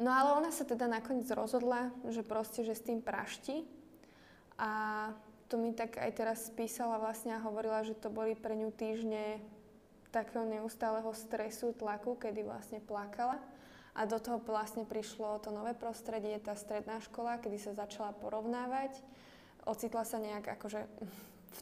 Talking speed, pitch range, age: 155 wpm, 215-240 Hz, 20-39